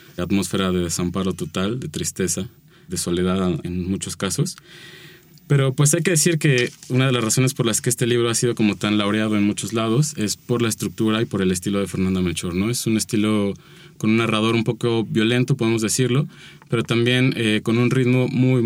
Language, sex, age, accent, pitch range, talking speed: Spanish, male, 20-39, Mexican, 95-120 Hz, 210 wpm